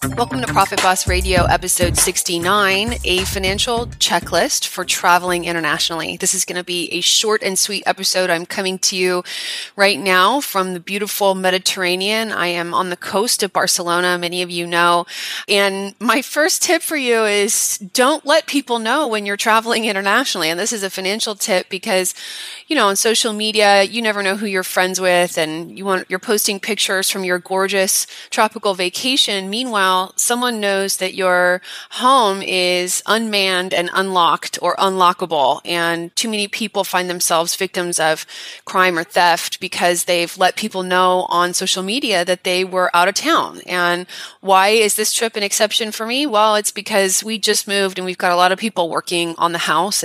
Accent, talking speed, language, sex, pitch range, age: American, 180 wpm, English, female, 175-210 Hz, 20-39